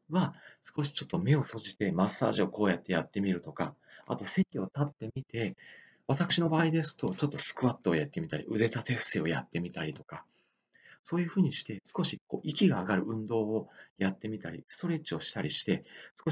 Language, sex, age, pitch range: Japanese, male, 40-59, 105-140 Hz